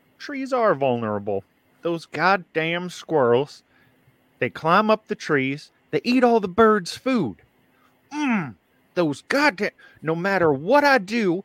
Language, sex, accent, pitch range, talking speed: English, male, American, 140-220 Hz, 130 wpm